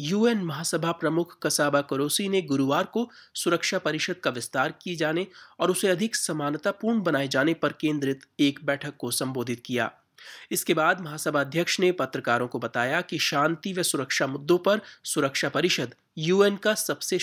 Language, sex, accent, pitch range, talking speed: Hindi, male, native, 140-180 Hz, 95 wpm